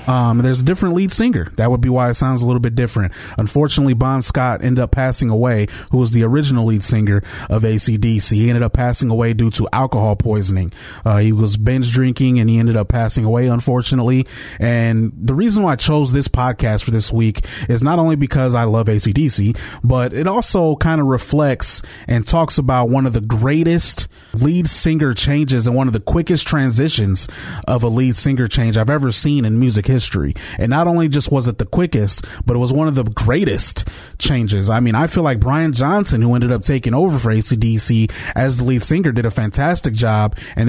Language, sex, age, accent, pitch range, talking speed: English, male, 30-49, American, 115-140 Hz, 210 wpm